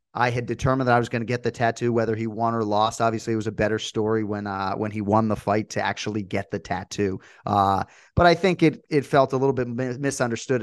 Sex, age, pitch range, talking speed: male, 30-49, 110-135 Hz, 255 wpm